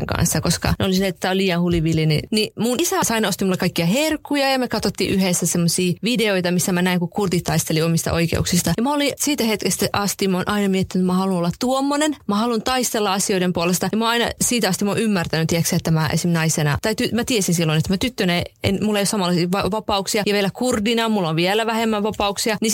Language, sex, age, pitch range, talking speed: Finnish, female, 30-49, 170-210 Hz, 230 wpm